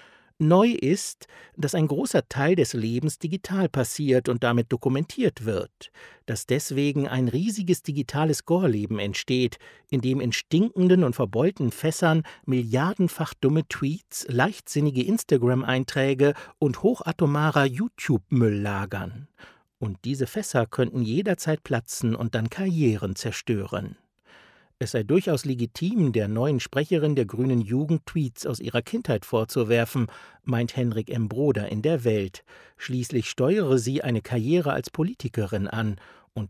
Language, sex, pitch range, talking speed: German, male, 115-155 Hz, 125 wpm